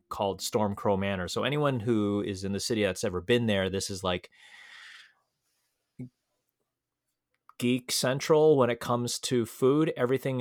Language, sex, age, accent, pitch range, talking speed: English, male, 30-49, American, 95-120 Hz, 145 wpm